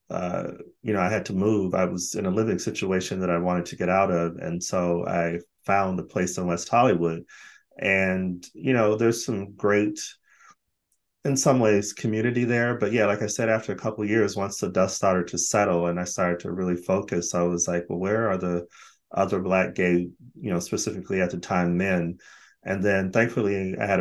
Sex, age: male, 30-49